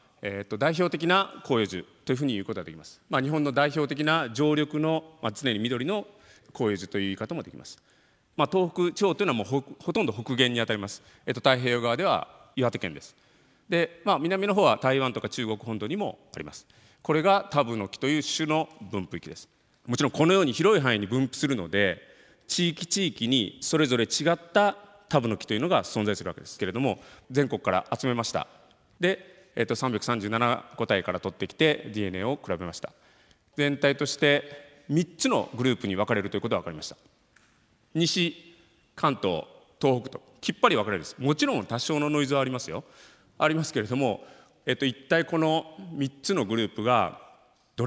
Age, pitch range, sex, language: 40-59, 115-170 Hz, male, Japanese